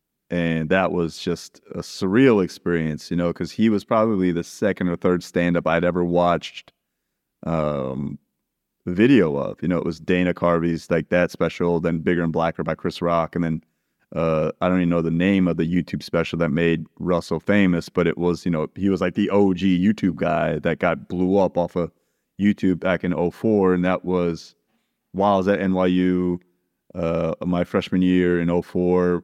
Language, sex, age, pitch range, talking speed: English, male, 30-49, 85-90 Hz, 195 wpm